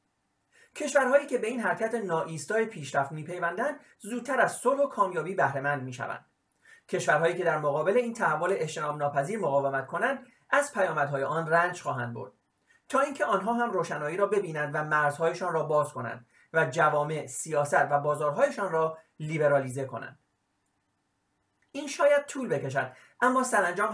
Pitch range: 145-215 Hz